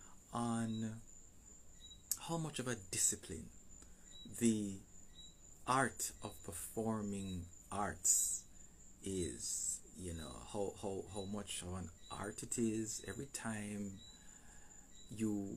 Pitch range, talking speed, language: 90-110 Hz, 95 wpm, English